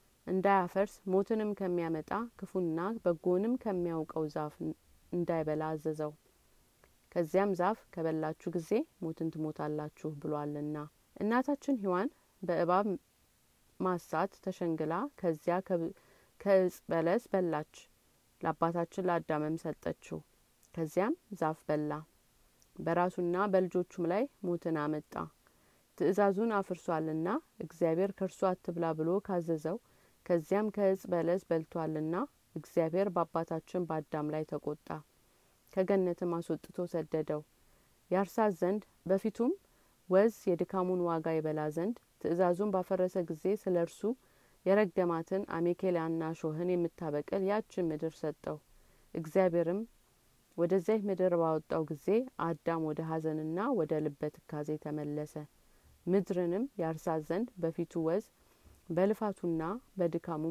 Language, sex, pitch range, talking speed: Amharic, female, 160-190 Hz, 95 wpm